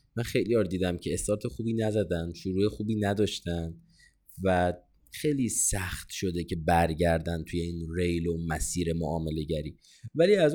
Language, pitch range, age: Persian, 90-125 Hz, 30-49